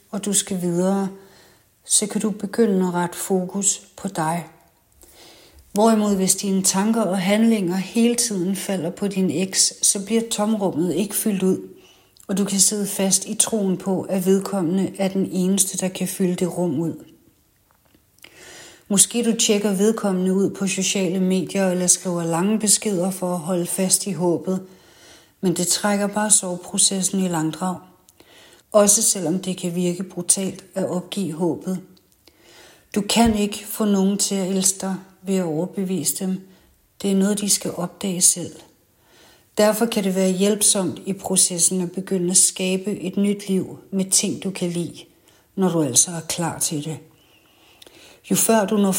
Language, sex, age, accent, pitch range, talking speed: Danish, female, 60-79, native, 180-200 Hz, 165 wpm